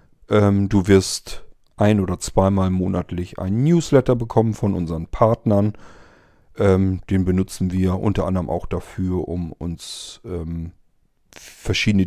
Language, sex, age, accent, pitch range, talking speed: German, male, 40-59, German, 90-115 Hz, 110 wpm